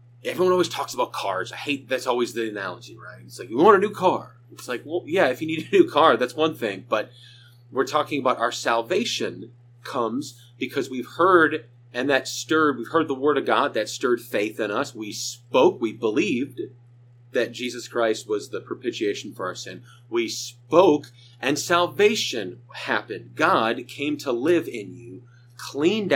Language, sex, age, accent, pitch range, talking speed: English, male, 30-49, American, 120-145 Hz, 185 wpm